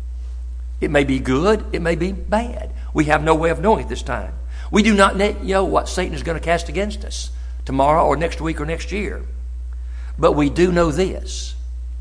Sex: male